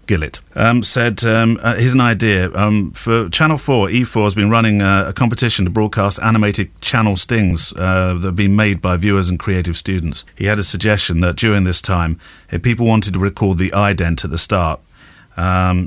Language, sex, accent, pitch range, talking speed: English, male, British, 90-120 Hz, 200 wpm